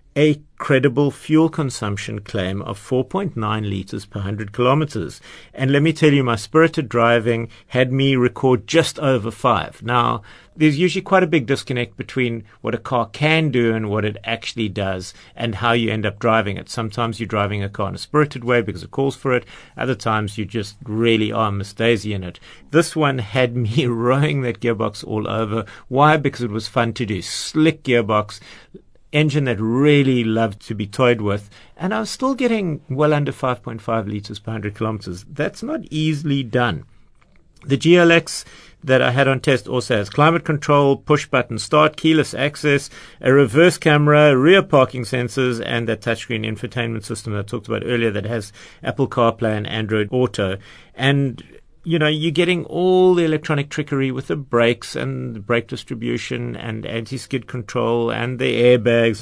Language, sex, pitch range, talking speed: English, male, 110-145 Hz, 175 wpm